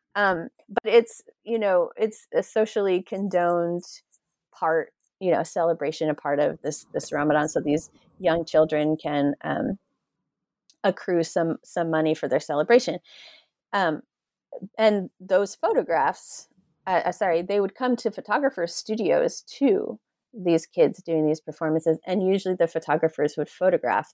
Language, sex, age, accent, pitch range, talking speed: English, female, 30-49, American, 155-195 Hz, 140 wpm